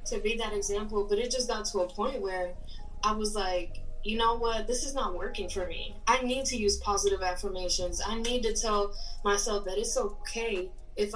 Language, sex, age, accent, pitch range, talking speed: English, female, 10-29, American, 195-240 Hz, 210 wpm